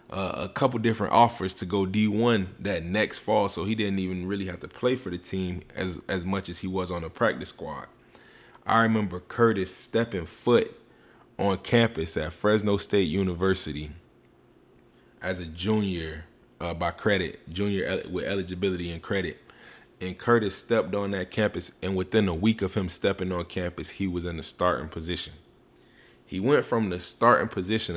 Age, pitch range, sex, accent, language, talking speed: 20-39, 90-105 Hz, male, American, English, 175 wpm